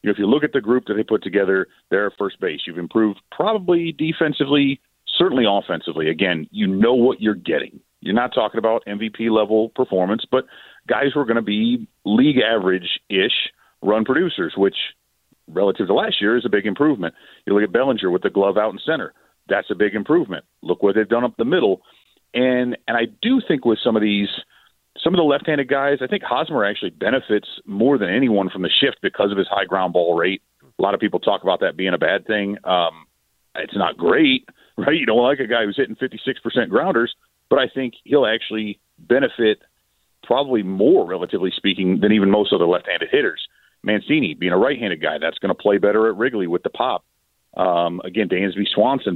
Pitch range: 100-140 Hz